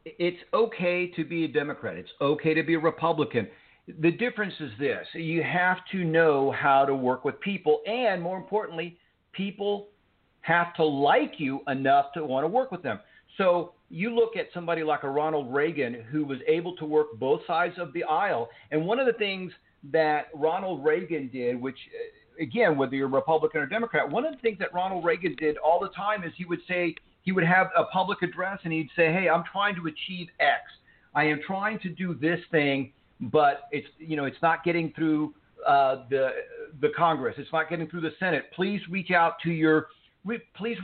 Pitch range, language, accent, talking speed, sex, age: 150-185 Hz, English, American, 200 wpm, male, 50-69